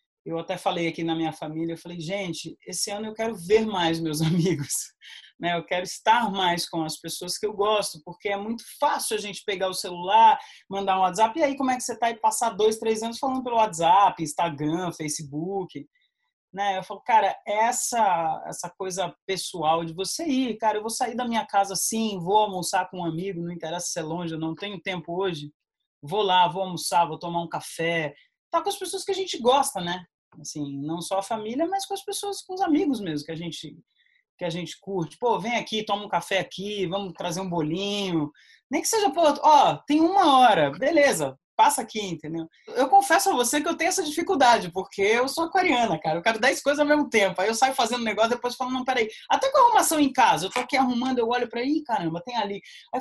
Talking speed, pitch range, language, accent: 225 wpm, 175-280 Hz, Portuguese, Brazilian